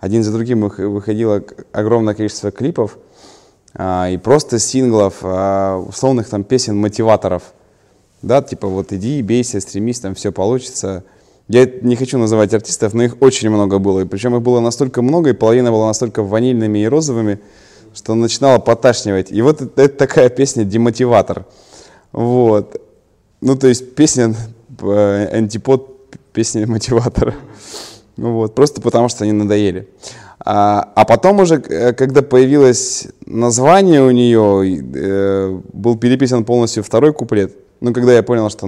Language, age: Russian, 20-39